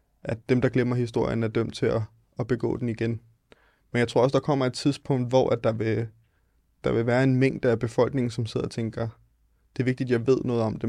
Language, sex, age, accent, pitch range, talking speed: Danish, male, 20-39, native, 115-130 Hz, 235 wpm